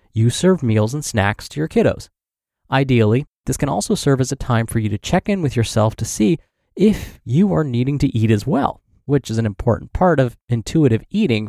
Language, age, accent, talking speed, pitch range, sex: English, 20-39, American, 215 wpm, 110-155 Hz, male